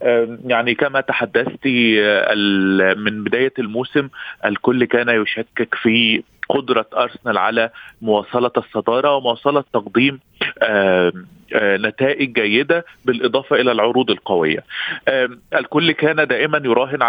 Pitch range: 115-145 Hz